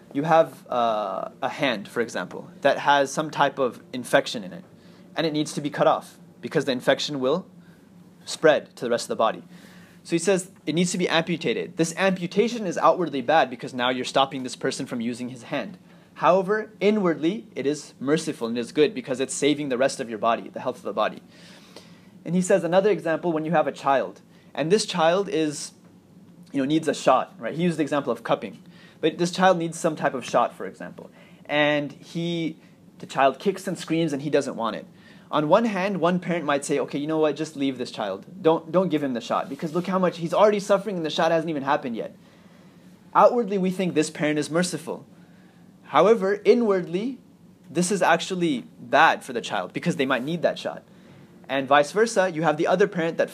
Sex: male